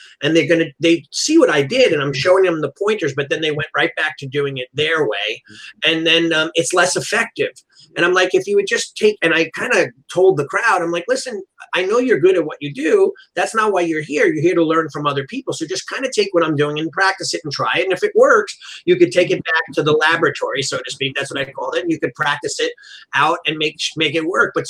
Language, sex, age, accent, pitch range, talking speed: English, male, 30-49, American, 145-225 Hz, 280 wpm